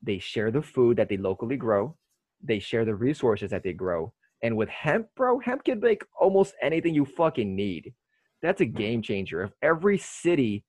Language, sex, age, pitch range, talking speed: English, male, 20-39, 115-165 Hz, 190 wpm